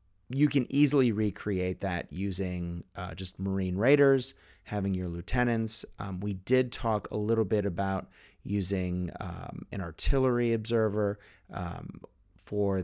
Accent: American